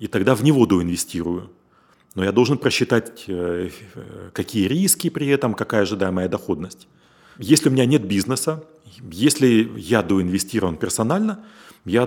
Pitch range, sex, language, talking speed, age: 110-165 Hz, male, Russian, 130 wpm, 40-59